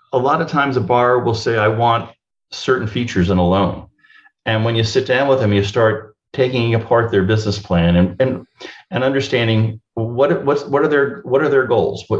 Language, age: English, 50-69